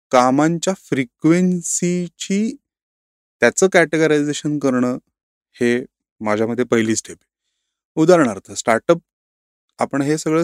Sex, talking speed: male, 85 wpm